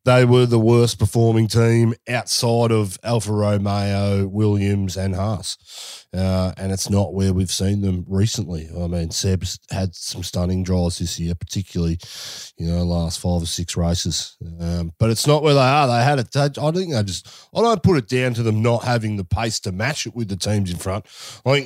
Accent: Australian